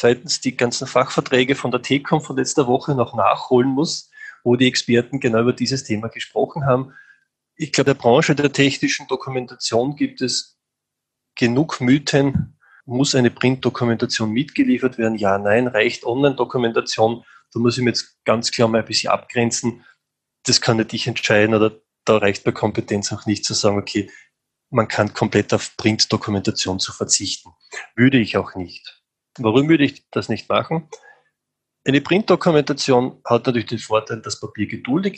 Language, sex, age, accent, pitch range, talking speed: German, male, 20-39, German, 110-140 Hz, 160 wpm